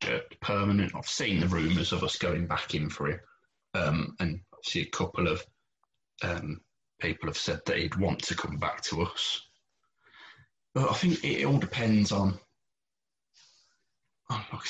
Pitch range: 85-100 Hz